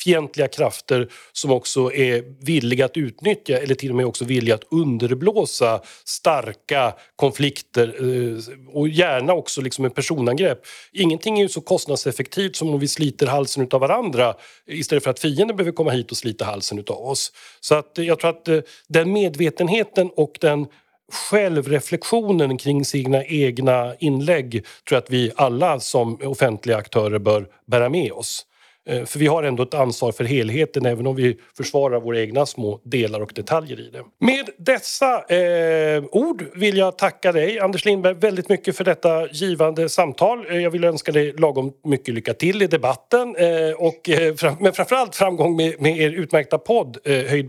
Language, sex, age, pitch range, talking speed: Swedish, male, 40-59, 130-175 Hz, 170 wpm